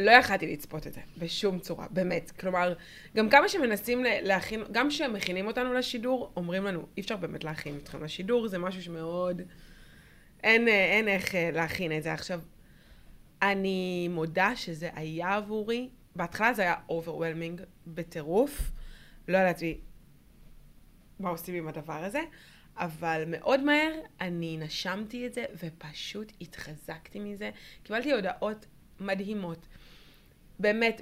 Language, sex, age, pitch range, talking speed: Hebrew, female, 20-39, 180-240 Hz, 130 wpm